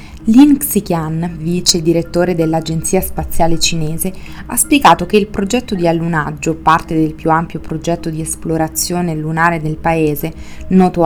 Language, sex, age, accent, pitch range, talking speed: Italian, female, 20-39, native, 160-190 Hz, 135 wpm